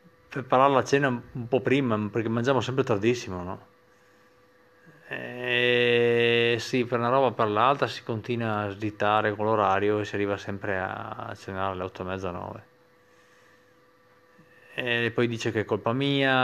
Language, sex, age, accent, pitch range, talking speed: Italian, male, 30-49, native, 105-165 Hz, 150 wpm